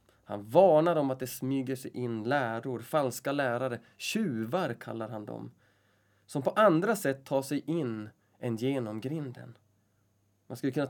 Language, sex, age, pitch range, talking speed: Swedish, male, 20-39, 105-140 Hz, 155 wpm